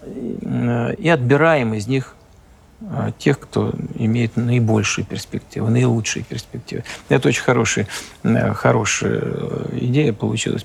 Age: 50-69